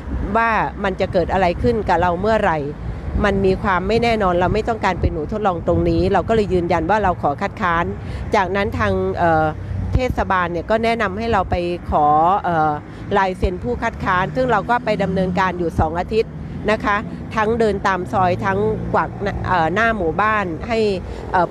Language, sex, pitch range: Thai, female, 180-215 Hz